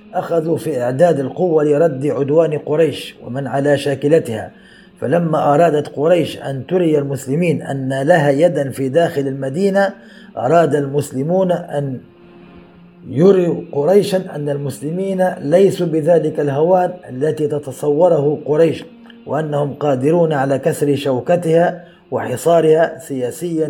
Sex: male